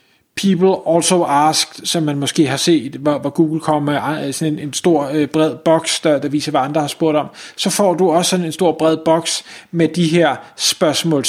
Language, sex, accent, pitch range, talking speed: Danish, male, native, 150-190 Hz, 205 wpm